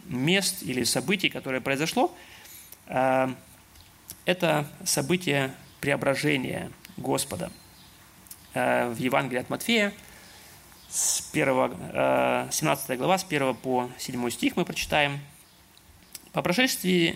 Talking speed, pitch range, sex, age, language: 85 wpm, 125-185 Hz, male, 20-39, Russian